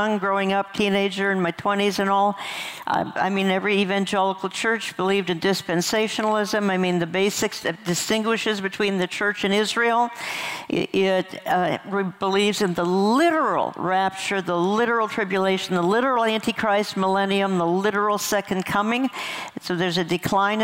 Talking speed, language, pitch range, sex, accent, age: 150 wpm, English, 185-220 Hz, female, American, 60-79